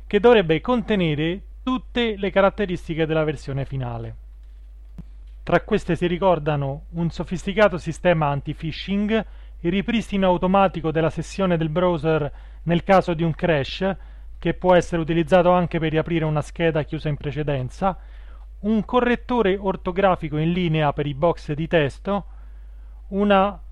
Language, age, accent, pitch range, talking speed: Italian, 30-49, native, 160-195 Hz, 130 wpm